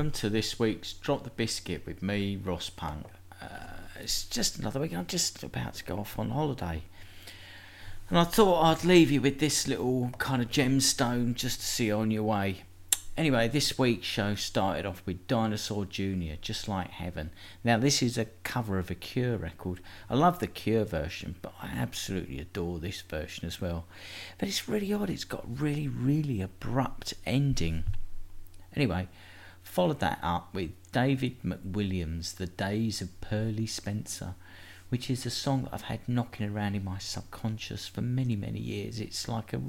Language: English